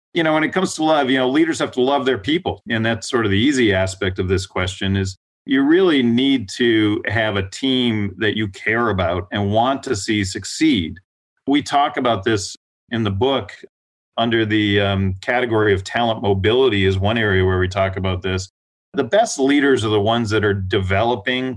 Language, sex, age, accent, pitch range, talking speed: English, male, 40-59, American, 105-130 Hz, 205 wpm